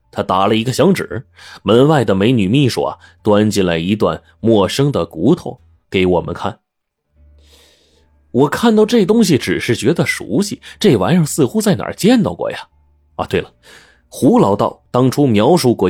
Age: 30-49